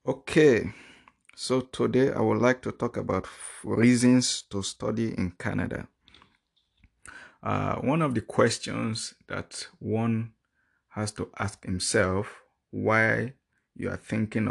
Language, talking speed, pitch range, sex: English, 120 wpm, 95-115 Hz, male